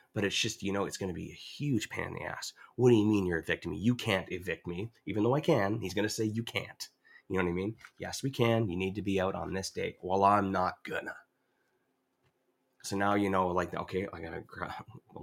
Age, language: 30-49, English